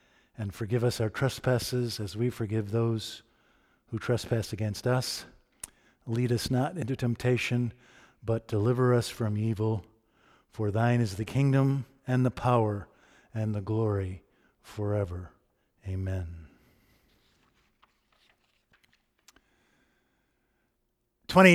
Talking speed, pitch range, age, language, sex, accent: 105 wpm, 115-140 Hz, 50-69, English, male, American